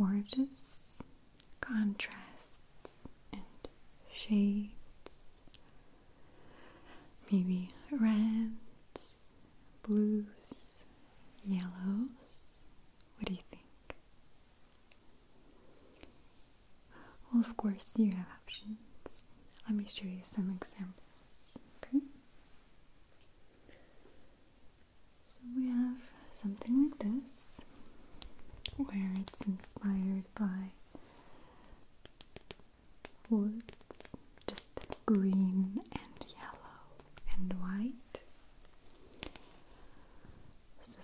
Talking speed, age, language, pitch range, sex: 65 wpm, 30-49, English, 190-230 Hz, female